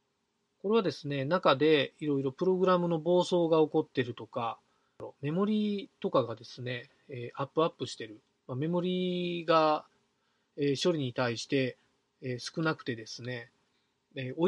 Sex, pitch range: male, 130-180 Hz